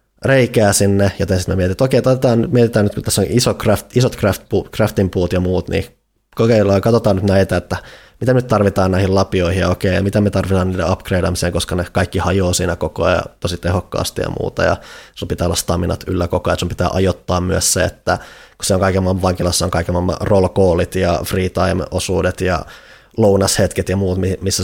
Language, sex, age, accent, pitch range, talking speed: Finnish, male, 20-39, native, 90-105 Hz, 205 wpm